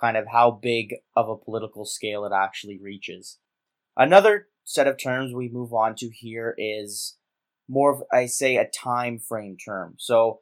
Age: 20-39